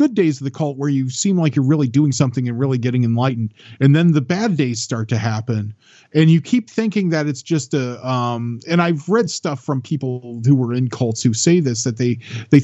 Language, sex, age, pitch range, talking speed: English, male, 40-59, 120-150 Hz, 240 wpm